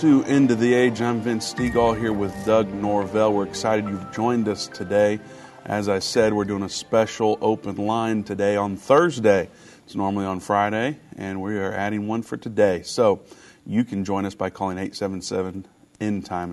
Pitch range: 100-110 Hz